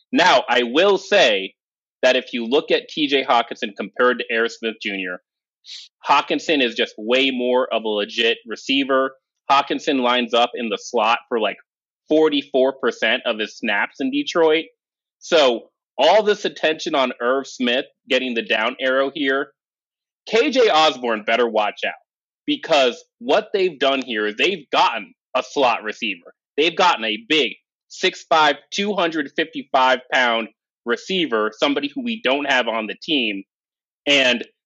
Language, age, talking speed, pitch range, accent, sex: English, 30-49, 150 wpm, 120-160 Hz, American, male